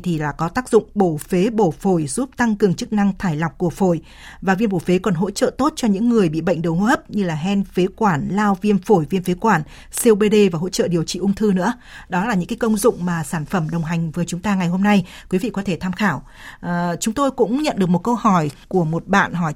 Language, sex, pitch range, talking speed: Vietnamese, female, 180-230 Hz, 275 wpm